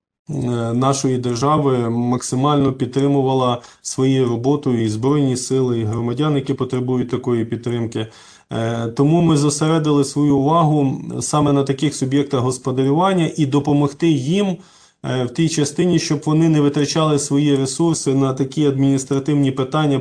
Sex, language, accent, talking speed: male, Ukrainian, native, 125 wpm